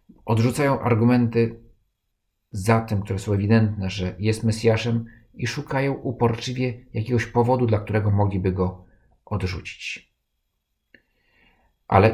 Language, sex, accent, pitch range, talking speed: Polish, male, native, 95-115 Hz, 105 wpm